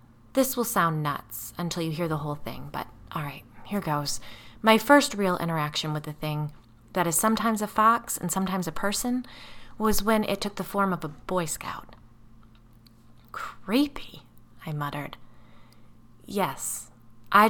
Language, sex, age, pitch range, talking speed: English, female, 20-39, 145-215 Hz, 160 wpm